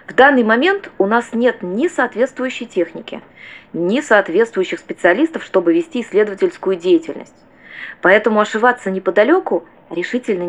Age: 20-39